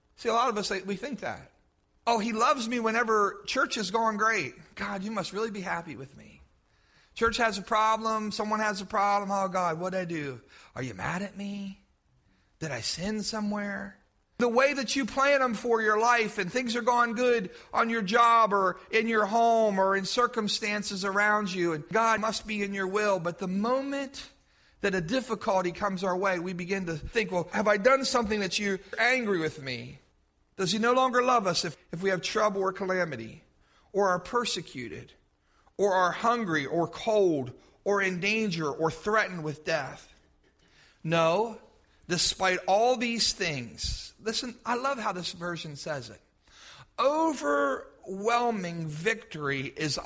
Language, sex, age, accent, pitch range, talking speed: English, male, 40-59, American, 180-235 Hz, 175 wpm